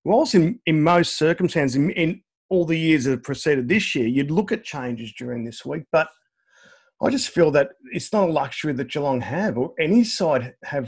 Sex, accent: male, Australian